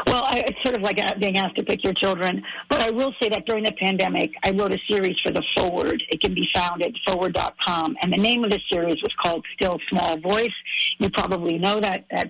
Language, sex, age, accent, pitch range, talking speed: English, female, 50-69, American, 180-215 Hz, 235 wpm